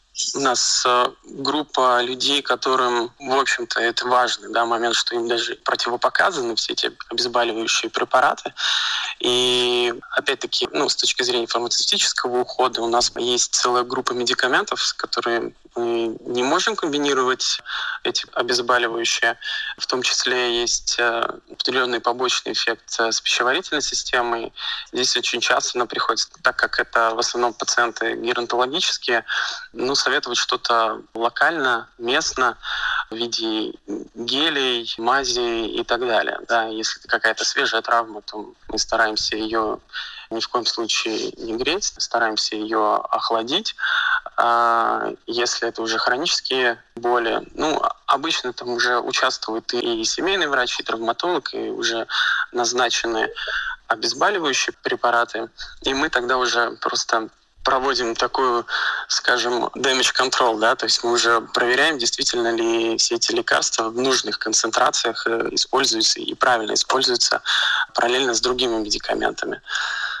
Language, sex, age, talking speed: Russian, male, 20-39, 125 wpm